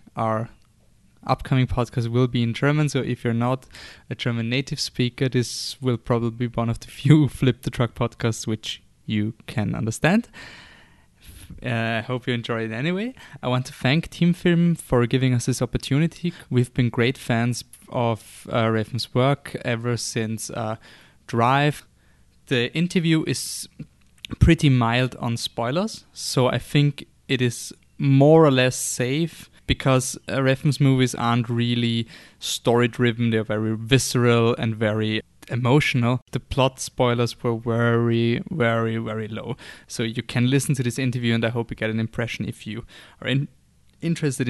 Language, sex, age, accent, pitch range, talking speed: German, male, 20-39, German, 115-135 Hz, 160 wpm